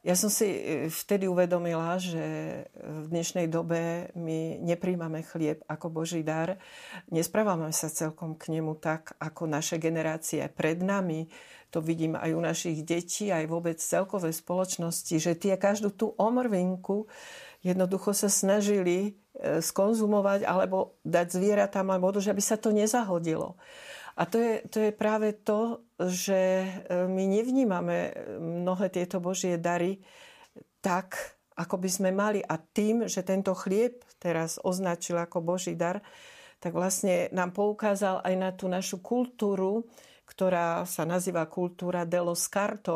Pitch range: 170-200 Hz